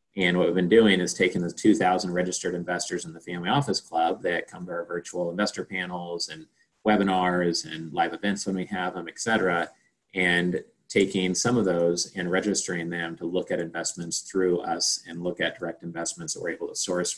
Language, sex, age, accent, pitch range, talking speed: English, male, 30-49, American, 85-95 Hz, 205 wpm